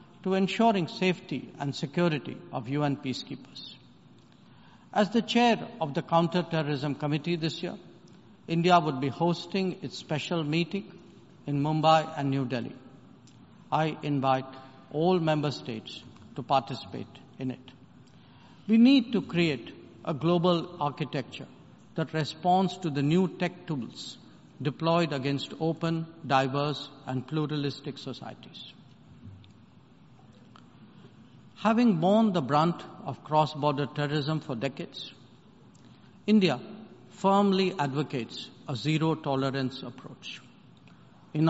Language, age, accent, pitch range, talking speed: English, 70-89, Indian, 140-175 Hz, 110 wpm